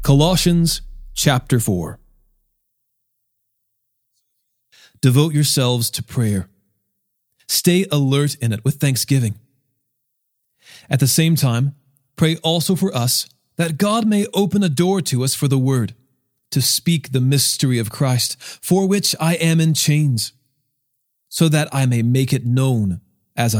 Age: 40-59